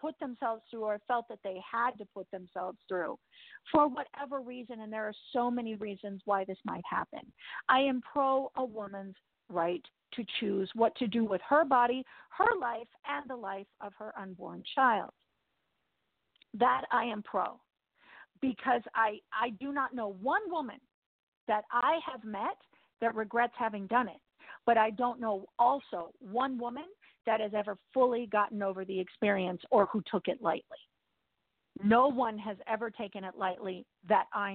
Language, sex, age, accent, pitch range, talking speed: English, female, 50-69, American, 200-245 Hz, 170 wpm